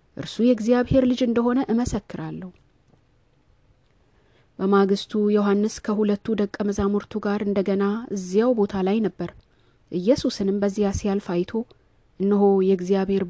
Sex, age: female, 30-49